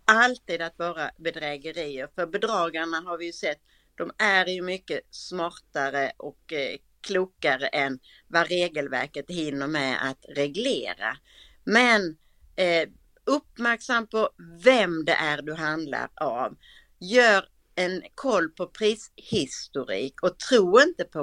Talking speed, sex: 120 wpm, female